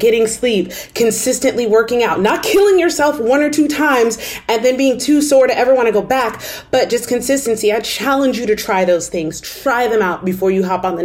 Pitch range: 180-230 Hz